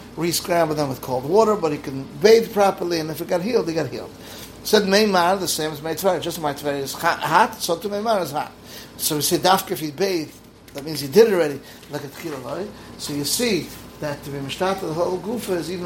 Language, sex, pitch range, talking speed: English, male, 155-195 Hz, 230 wpm